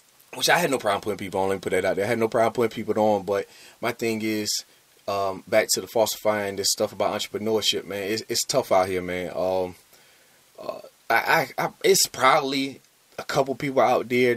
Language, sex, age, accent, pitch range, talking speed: English, male, 20-39, American, 95-110 Hz, 220 wpm